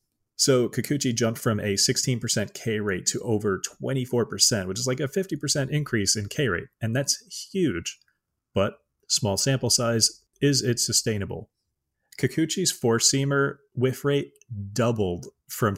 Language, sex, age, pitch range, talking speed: English, male, 30-49, 100-125 Hz, 135 wpm